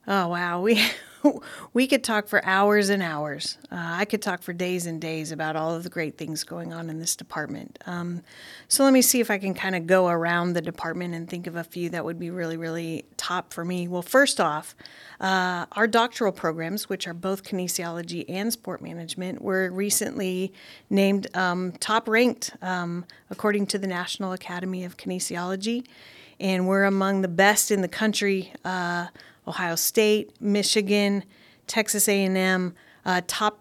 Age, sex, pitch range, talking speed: 30-49, female, 170-200 Hz, 175 wpm